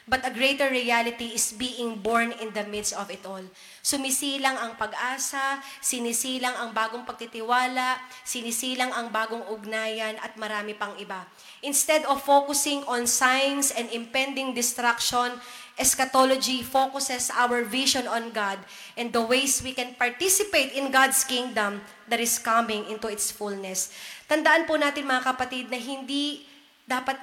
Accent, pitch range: native, 230-275 Hz